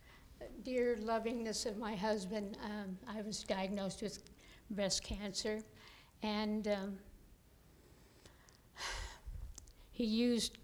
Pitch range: 200-230 Hz